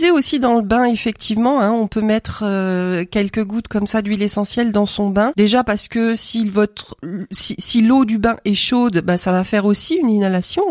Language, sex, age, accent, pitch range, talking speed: French, female, 40-59, French, 185-240 Hz, 215 wpm